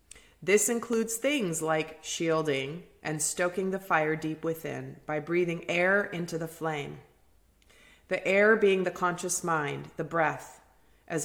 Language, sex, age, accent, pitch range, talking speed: English, female, 30-49, American, 150-185 Hz, 140 wpm